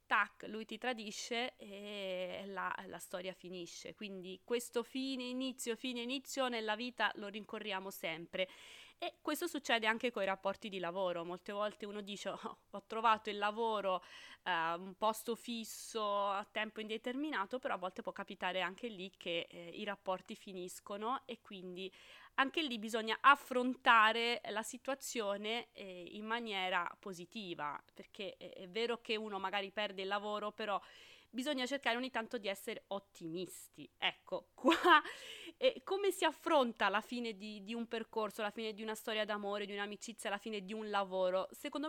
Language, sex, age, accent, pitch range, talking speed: Italian, female, 20-39, native, 200-250 Hz, 160 wpm